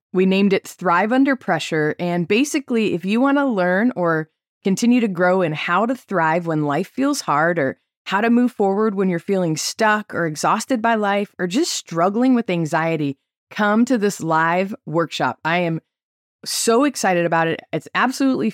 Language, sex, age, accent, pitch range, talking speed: English, female, 20-39, American, 165-225 Hz, 180 wpm